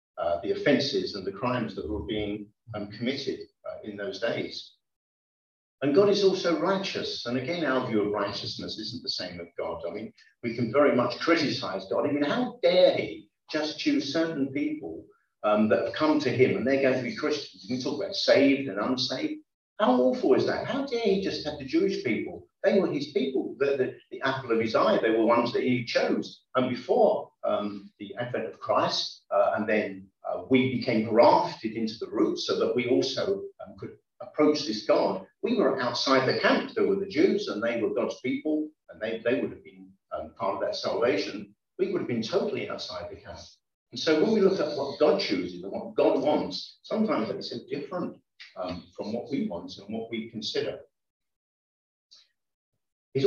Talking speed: 205 wpm